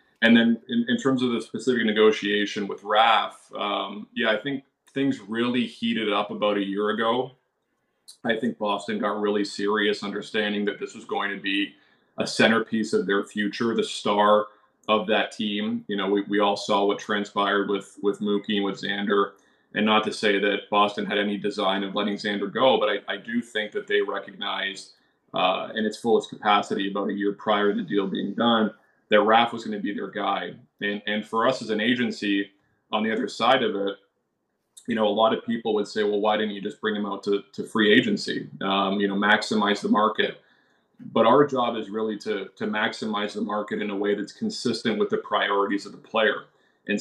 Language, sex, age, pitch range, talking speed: English, male, 20-39, 100-115 Hz, 210 wpm